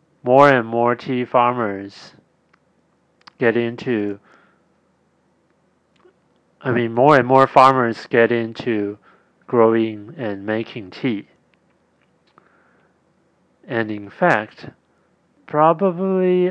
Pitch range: 110-145 Hz